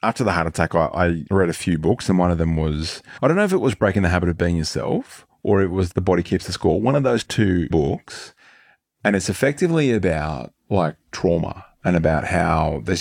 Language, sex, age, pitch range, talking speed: English, male, 30-49, 85-110 Hz, 230 wpm